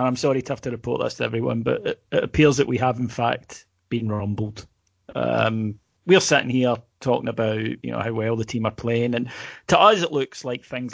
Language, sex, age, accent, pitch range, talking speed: English, male, 30-49, British, 120-155 Hz, 225 wpm